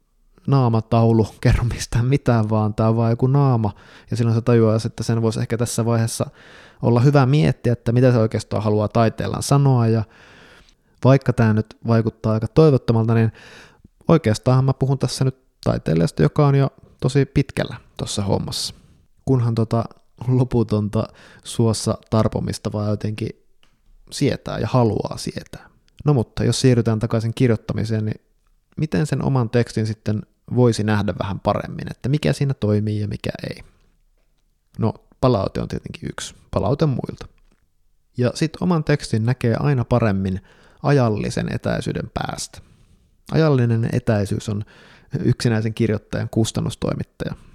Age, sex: 20-39, male